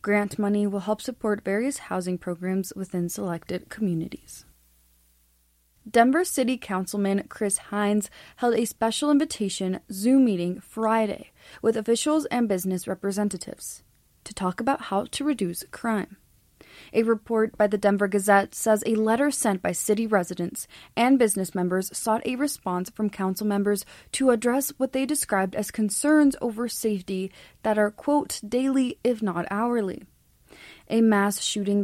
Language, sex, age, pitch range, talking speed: English, female, 20-39, 190-230 Hz, 145 wpm